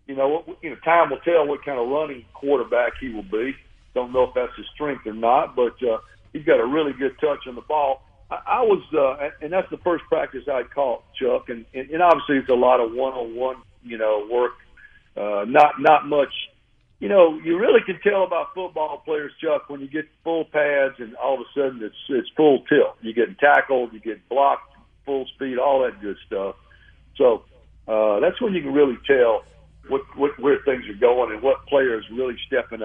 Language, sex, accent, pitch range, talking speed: English, male, American, 125-190 Hz, 225 wpm